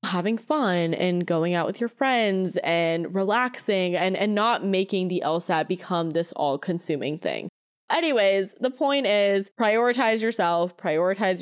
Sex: female